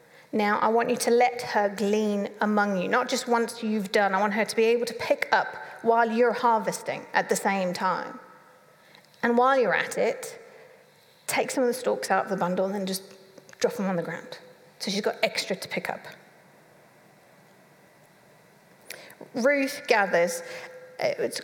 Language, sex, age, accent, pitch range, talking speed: English, female, 40-59, British, 195-255 Hz, 175 wpm